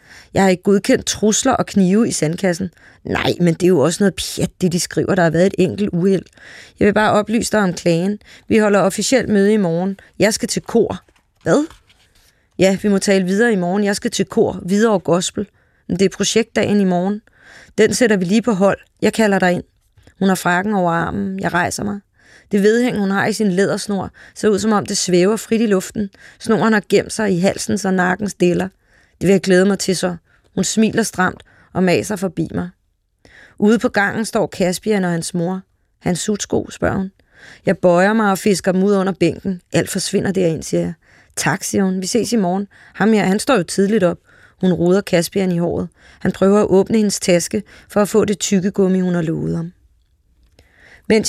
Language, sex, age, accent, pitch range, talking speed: Danish, female, 30-49, native, 180-210 Hz, 215 wpm